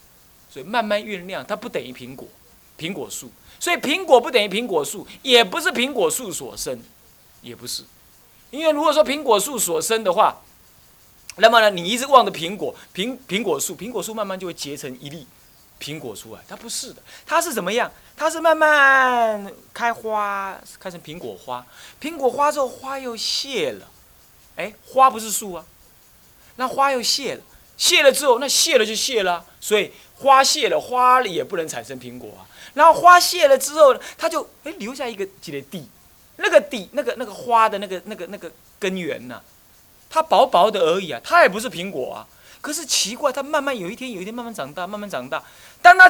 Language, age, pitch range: Chinese, 30-49, 190-290 Hz